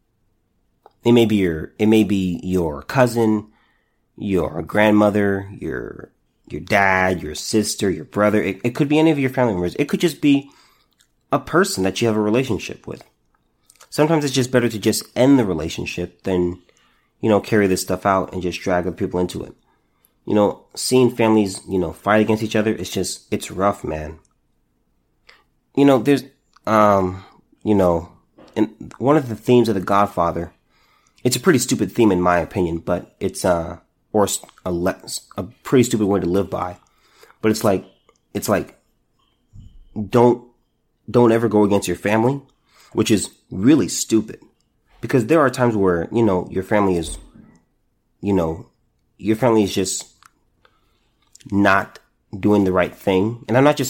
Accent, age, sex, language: American, 30-49, male, English